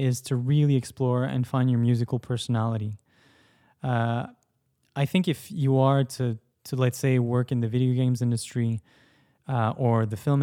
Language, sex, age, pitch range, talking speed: English, male, 10-29, 115-130 Hz, 165 wpm